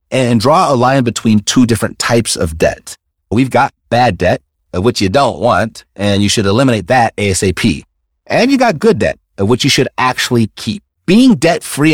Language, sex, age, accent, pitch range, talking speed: English, male, 30-49, American, 100-140 Hz, 180 wpm